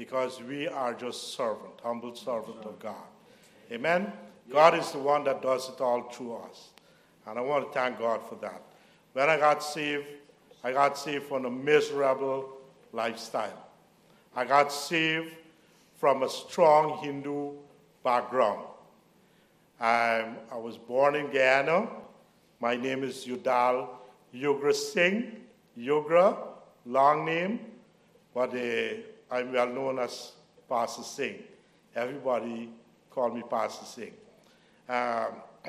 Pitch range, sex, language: 125-175 Hz, male, English